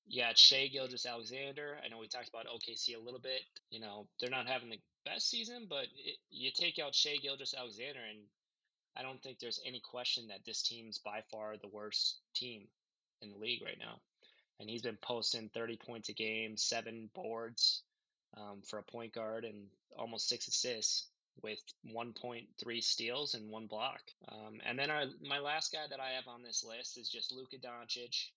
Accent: American